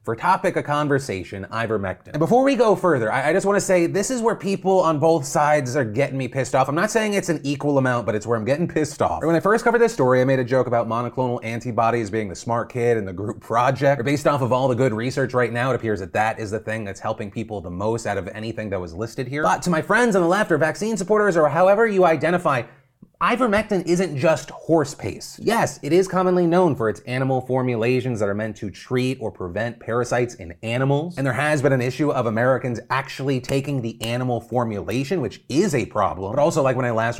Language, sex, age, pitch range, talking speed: English, male, 30-49, 115-155 Hz, 245 wpm